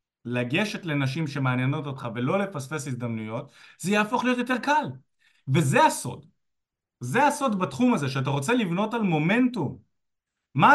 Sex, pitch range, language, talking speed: male, 140-205 Hz, Hebrew, 135 wpm